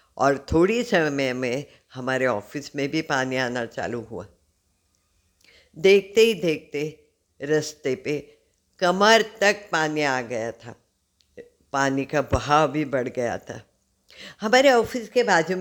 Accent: native